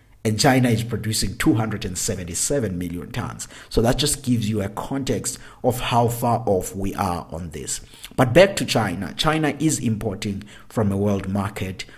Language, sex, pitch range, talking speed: English, male, 95-120 Hz, 165 wpm